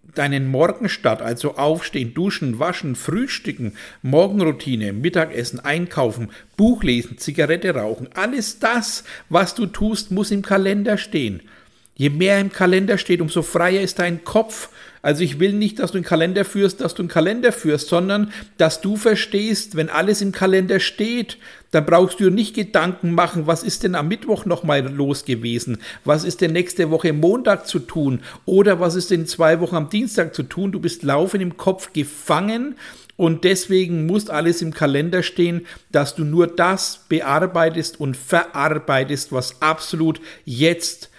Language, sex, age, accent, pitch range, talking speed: German, male, 60-79, German, 150-195 Hz, 160 wpm